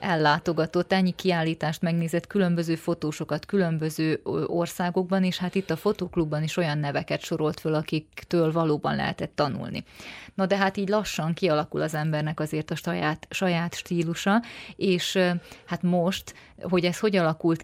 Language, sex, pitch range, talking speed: Hungarian, female, 155-185 Hz, 140 wpm